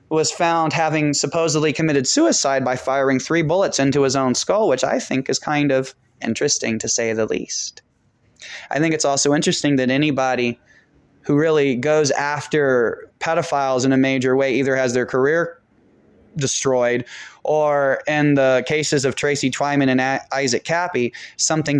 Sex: male